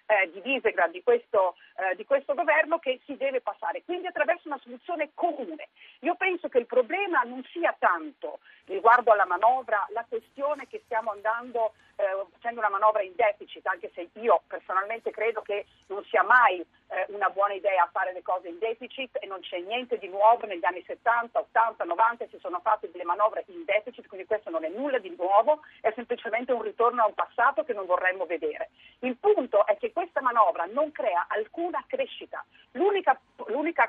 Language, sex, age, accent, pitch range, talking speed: Italian, female, 40-59, native, 210-320 Hz, 190 wpm